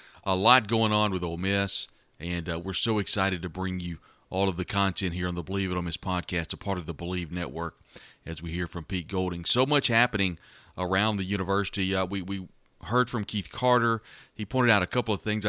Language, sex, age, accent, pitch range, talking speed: English, male, 40-59, American, 90-105 Hz, 230 wpm